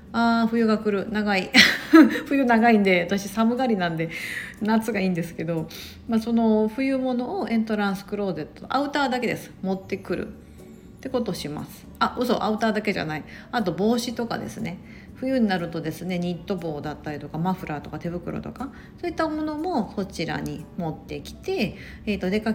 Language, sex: Japanese, female